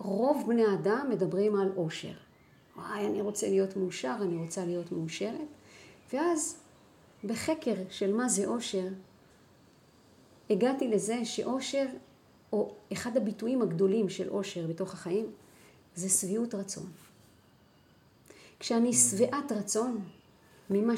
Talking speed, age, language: 110 wpm, 40-59, Hebrew